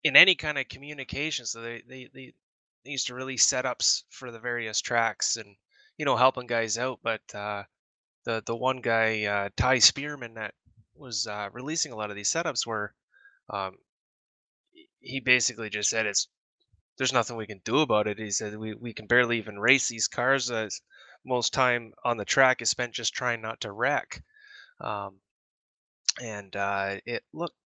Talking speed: 180 wpm